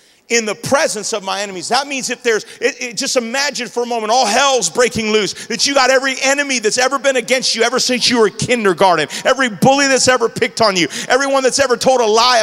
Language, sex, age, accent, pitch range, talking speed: English, male, 40-59, American, 235-315 Hz, 235 wpm